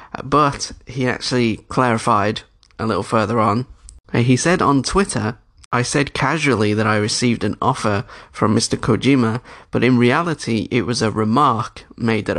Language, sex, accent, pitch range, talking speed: English, male, British, 105-125 Hz, 155 wpm